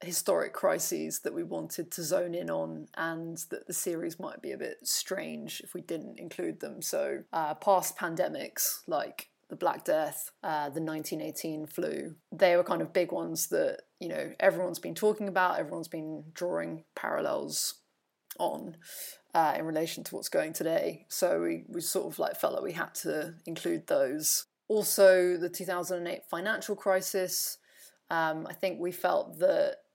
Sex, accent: female, British